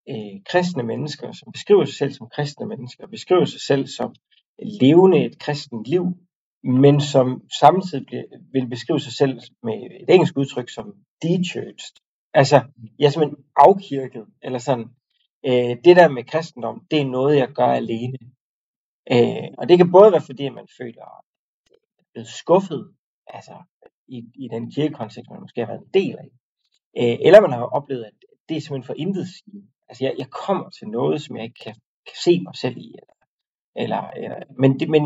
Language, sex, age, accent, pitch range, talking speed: Danish, male, 30-49, native, 120-175 Hz, 175 wpm